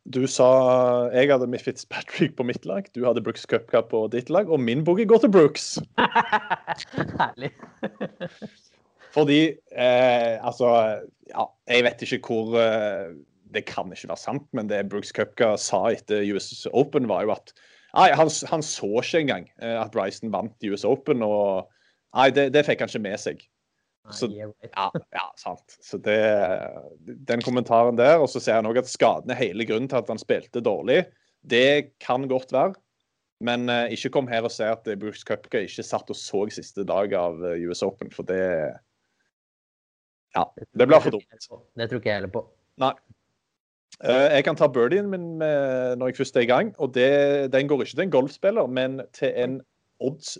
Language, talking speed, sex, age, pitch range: English, 175 wpm, male, 30-49, 110-135 Hz